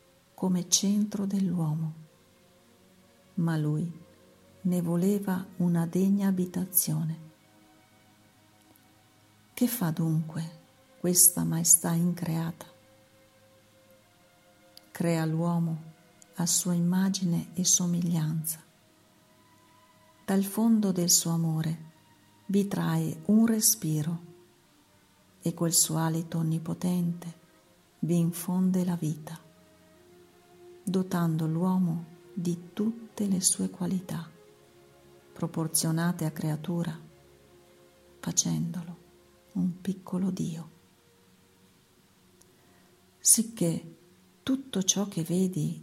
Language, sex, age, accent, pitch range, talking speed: Italian, female, 50-69, native, 155-180 Hz, 80 wpm